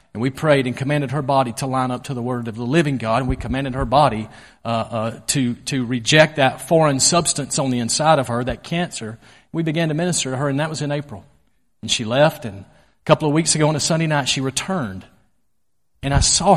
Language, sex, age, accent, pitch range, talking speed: English, male, 40-59, American, 130-185 Hz, 240 wpm